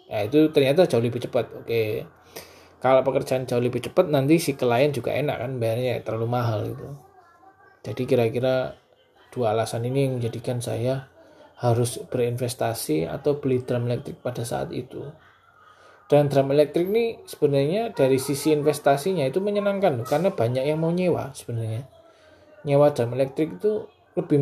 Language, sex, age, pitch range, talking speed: Indonesian, male, 20-39, 120-150 Hz, 150 wpm